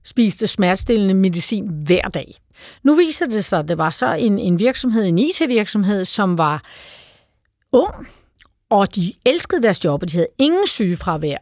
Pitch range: 195-265 Hz